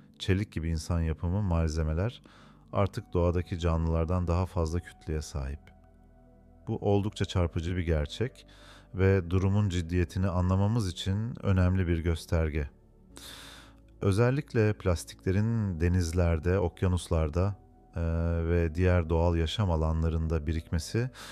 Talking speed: 100 wpm